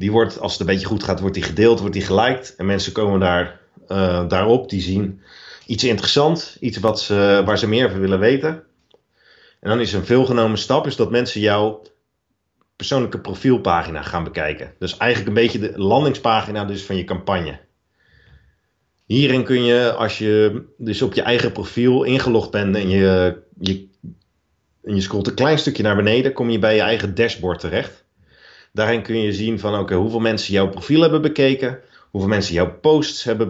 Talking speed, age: 185 wpm, 40-59